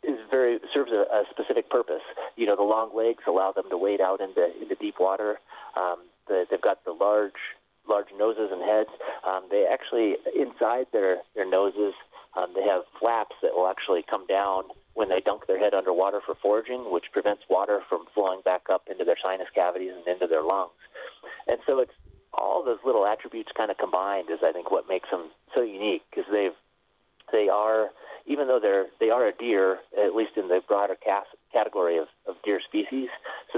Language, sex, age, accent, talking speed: English, male, 40-59, American, 200 wpm